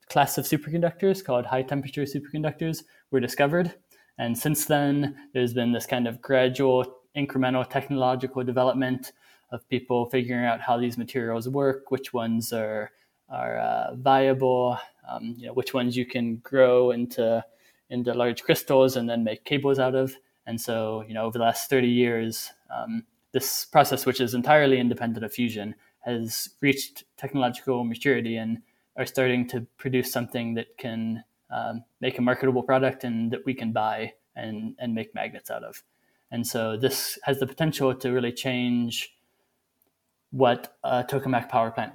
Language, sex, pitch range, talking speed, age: English, male, 120-135 Hz, 160 wpm, 20-39